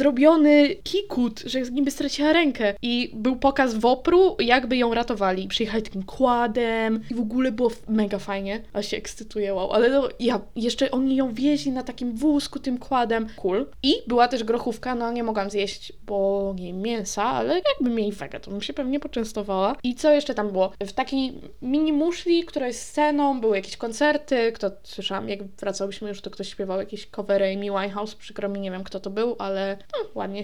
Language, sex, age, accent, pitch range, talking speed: Polish, female, 20-39, native, 205-250 Hz, 190 wpm